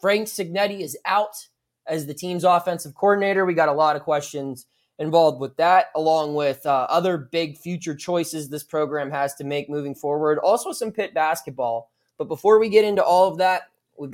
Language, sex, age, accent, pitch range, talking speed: English, male, 20-39, American, 150-195 Hz, 190 wpm